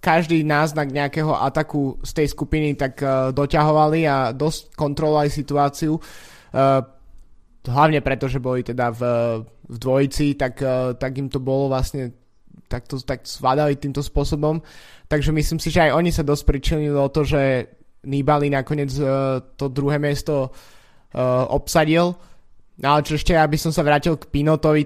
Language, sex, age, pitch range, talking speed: Slovak, male, 20-39, 135-150 Hz, 160 wpm